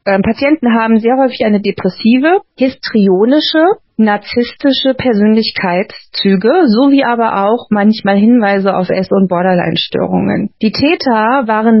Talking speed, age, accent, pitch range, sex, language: 105 wpm, 30-49, German, 195-240 Hz, female, German